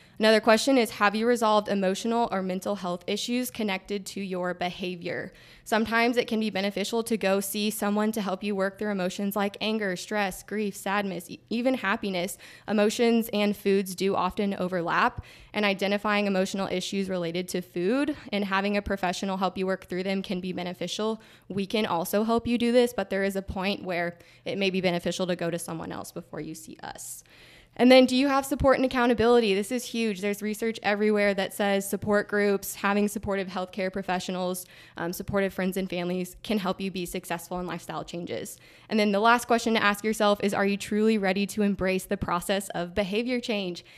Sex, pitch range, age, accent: female, 185-220 Hz, 20-39, American